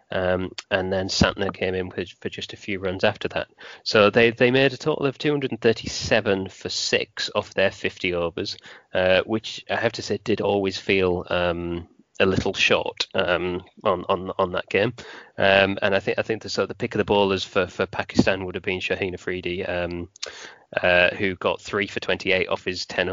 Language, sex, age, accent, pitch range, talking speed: English, male, 30-49, British, 90-110 Hz, 205 wpm